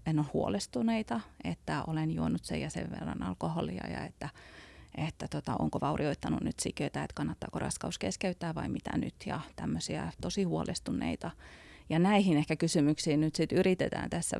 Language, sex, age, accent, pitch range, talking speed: Finnish, female, 30-49, native, 135-165 Hz, 160 wpm